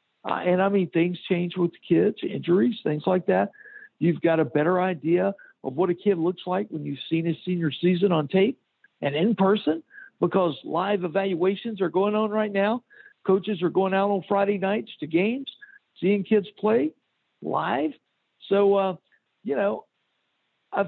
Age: 60-79